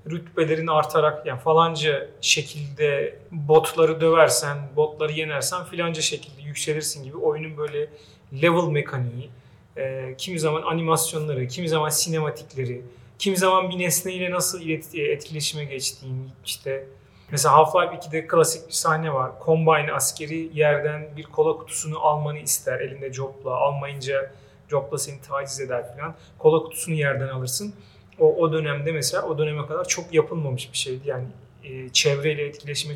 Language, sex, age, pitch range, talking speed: Turkish, male, 40-59, 135-160 Hz, 140 wpm